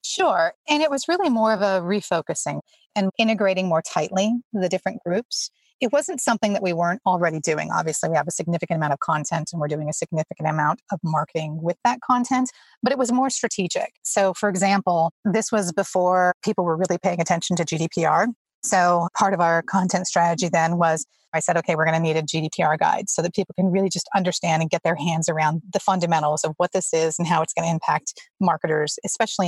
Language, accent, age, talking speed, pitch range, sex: English, American, 30-49, 215 wpm, 165-200 Hz, female